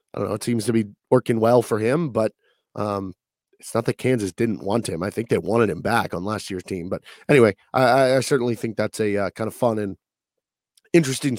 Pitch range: 110-145 Hz